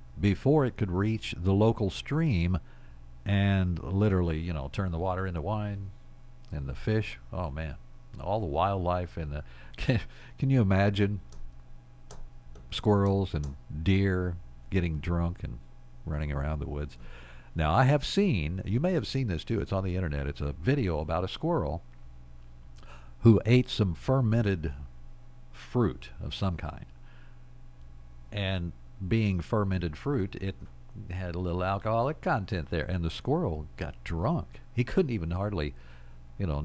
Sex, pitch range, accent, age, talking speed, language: male, 65-105 Hz, American, 50-69, 145 wpm, English